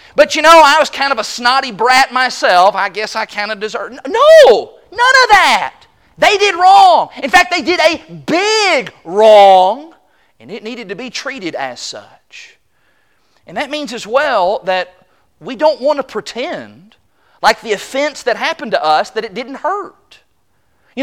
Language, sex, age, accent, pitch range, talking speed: English, male, 40-59, American, 265-345 Hz, 175 wpm